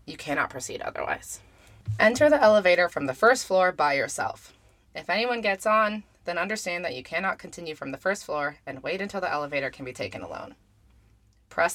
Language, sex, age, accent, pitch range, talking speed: English, female, 20-39, American, 135-180 Hz, 190 wpm